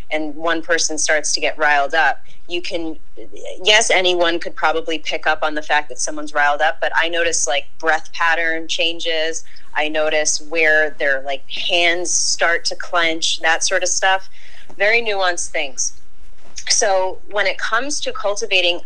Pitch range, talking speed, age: 155-200 Hz, 165 wpm, 30-49